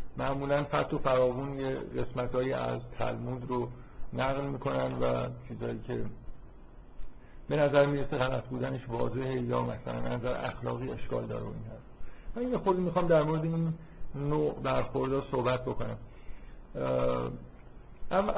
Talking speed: 130 wpm